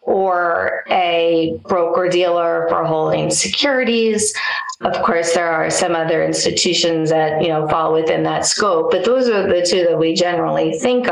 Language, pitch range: English, 175-225 Hz